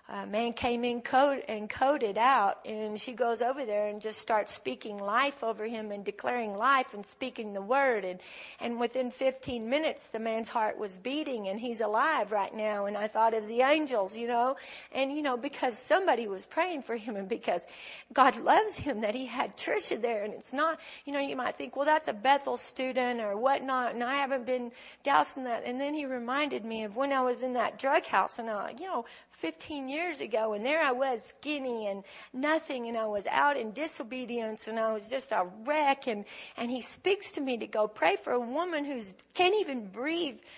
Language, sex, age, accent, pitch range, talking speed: English, female, 40-59, American, 220-285 Hz, 215 wpm